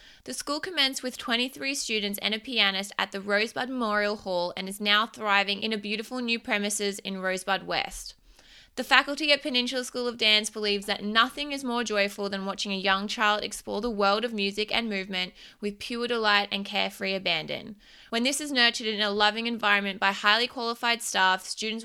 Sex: female